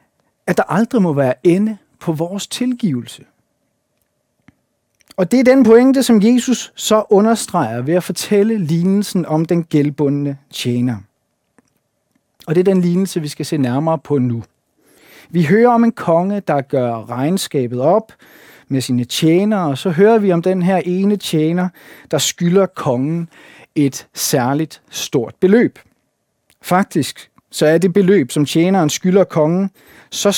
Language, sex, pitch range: Danish, male, 140-195 Hz